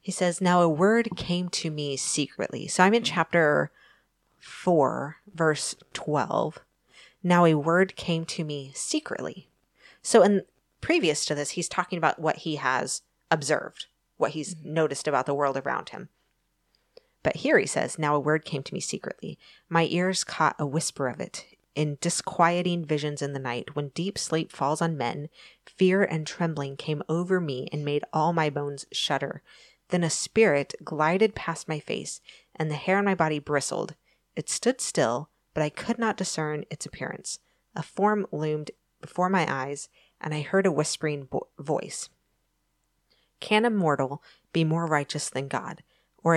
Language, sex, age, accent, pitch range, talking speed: English, female, 30-49, American, 150-180 Hz, 170 wpm